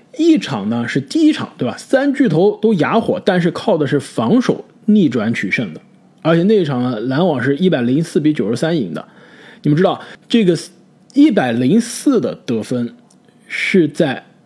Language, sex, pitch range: Chinese, male, 130-210 Hz